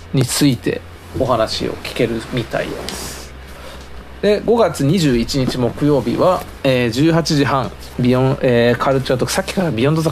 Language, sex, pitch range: Japanese, male, 100-135 Hz